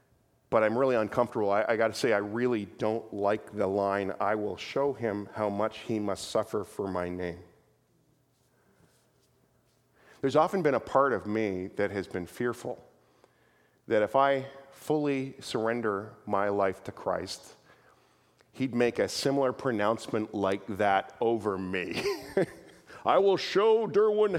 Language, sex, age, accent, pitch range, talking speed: English, male, 40-59, American, 110-175 Hz, 145 wpm